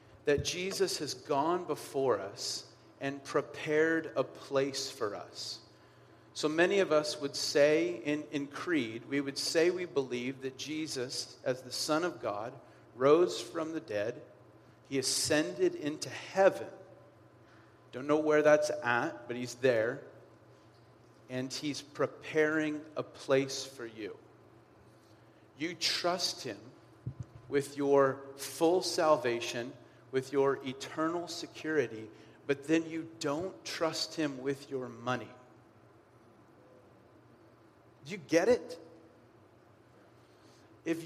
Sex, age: male, 40-59